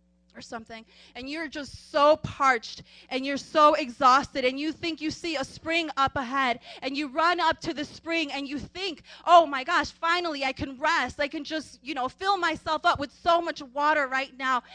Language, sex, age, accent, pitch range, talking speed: English, female, 30-49, American, 265-335 Hz, 210 wpm